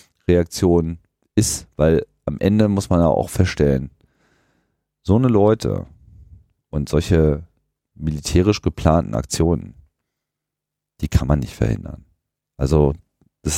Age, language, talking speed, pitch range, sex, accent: 40-59, German, 110 wpm, 75-90 Hz, male, German